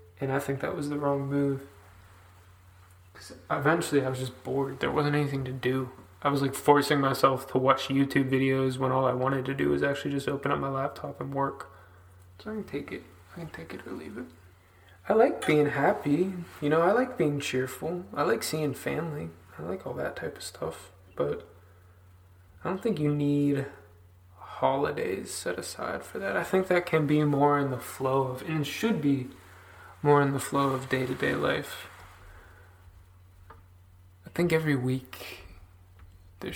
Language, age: English, 20-39